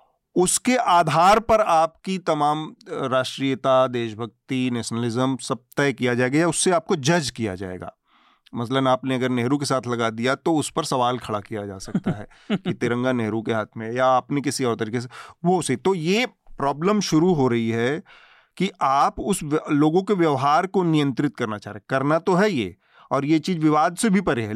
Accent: native